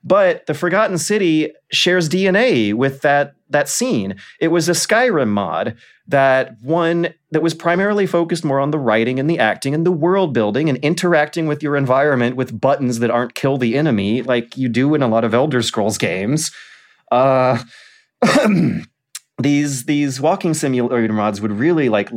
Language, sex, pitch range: English, male, 120-165 Hz